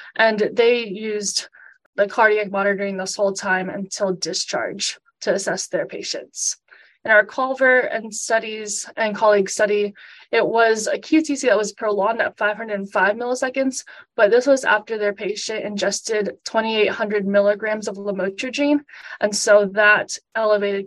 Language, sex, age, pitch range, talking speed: English, female, 20-39, 200-235 Hz, 140 wpm